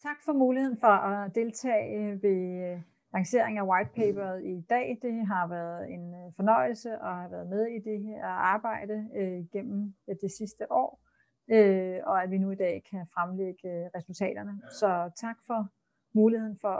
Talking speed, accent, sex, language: 165 wpm, native, female, Danish